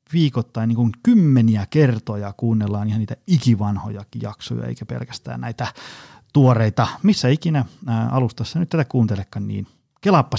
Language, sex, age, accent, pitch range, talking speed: Finnish, male, 30-49, native, 110-140 Hz, 135 wpm